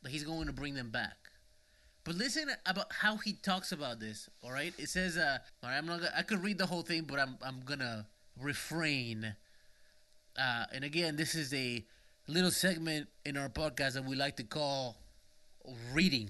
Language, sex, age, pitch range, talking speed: English, male, 20-39, 135-190 Hz, 200 wpm